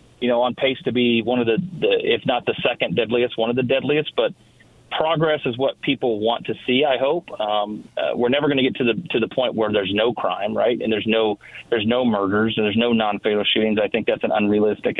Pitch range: 110-125 Hz